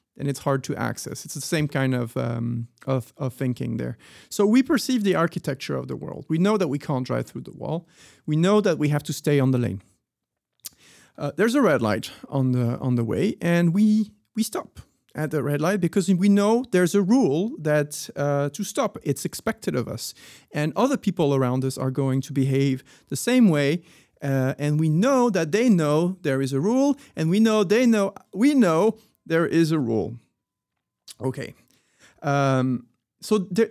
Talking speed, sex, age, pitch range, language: 200 wpm, male, 40-59, 140-215 Hz, English